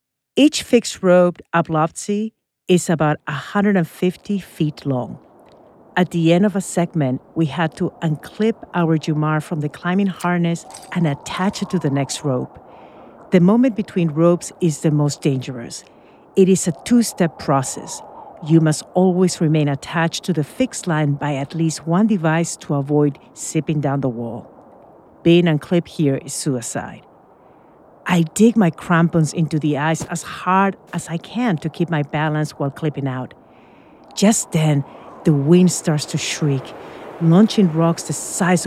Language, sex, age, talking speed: English, female, 50-69, 155 wpm